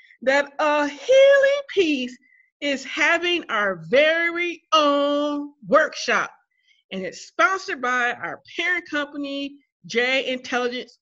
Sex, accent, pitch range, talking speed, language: female, American, 225-335 Hz, 105 wpm, English